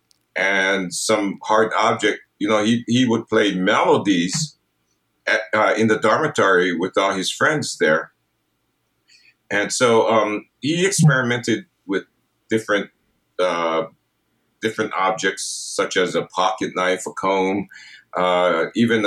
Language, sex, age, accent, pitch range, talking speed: English, male, 50-69, American, 95-115 Hz, 125 wpm